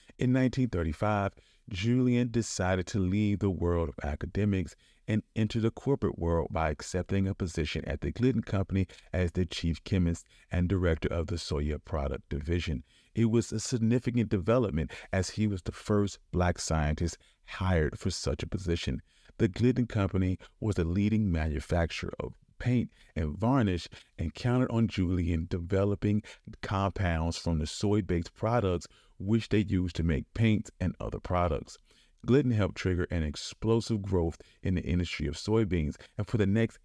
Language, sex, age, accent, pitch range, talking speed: English, male, 40-59, American, 90-115 Hz, 155 wpm